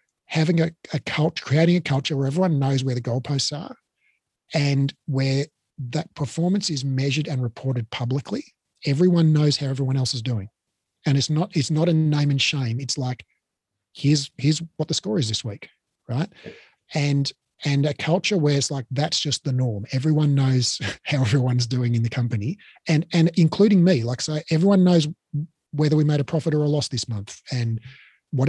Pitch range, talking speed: 125-155 Hz, 185 wpm